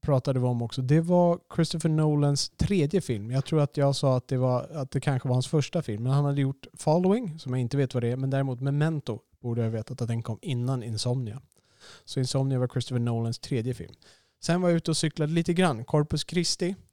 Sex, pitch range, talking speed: male, 120-150 Hz, 225 wpm